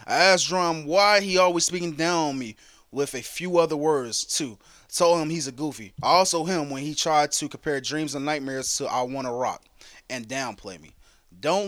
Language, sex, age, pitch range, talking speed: English, male, 20-39, 130-185 Hz, 200 wpm